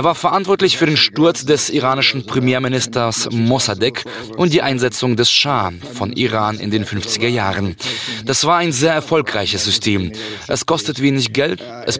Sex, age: male, 20-39